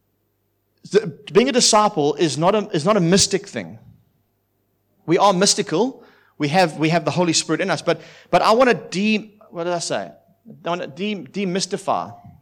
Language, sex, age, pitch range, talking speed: English, male, 30-49, 145-195 Hz, 185 wpm